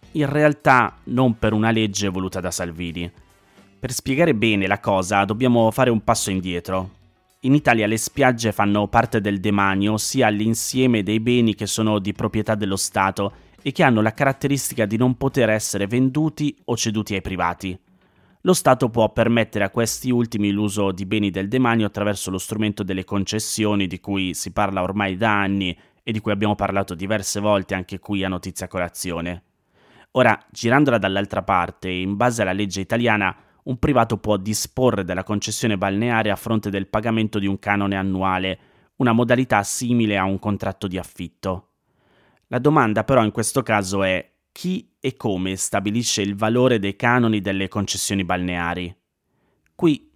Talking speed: 165 wpm